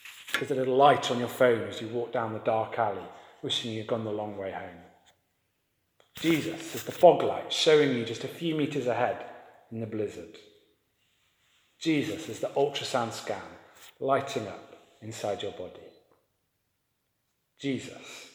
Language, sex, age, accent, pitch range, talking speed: English, male, 40-59, British, 120-180 Hz, 155 wpm